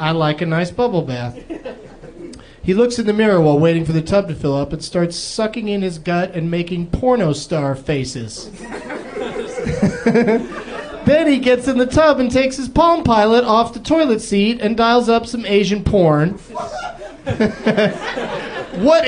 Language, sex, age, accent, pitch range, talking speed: English, male, 30-49, American, 160-230 Hz, 165 wpm